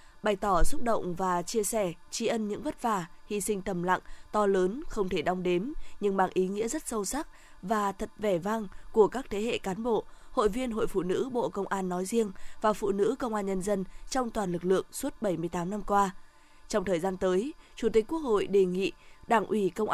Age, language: 20-39, Vietnamese